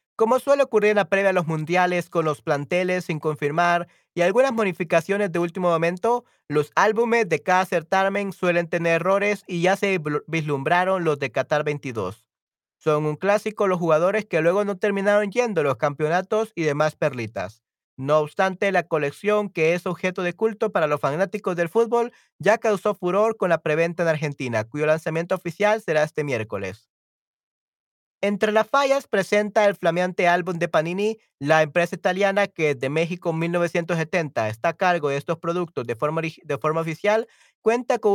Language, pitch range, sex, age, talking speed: Spanish, 155-205 Hz, male, 40-59, 175 wpm